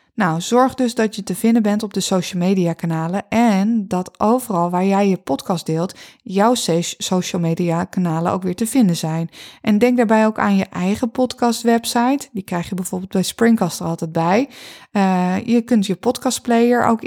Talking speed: 185 wpm